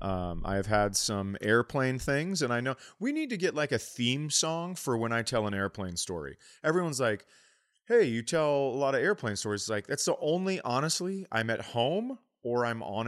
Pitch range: 100-135 Hz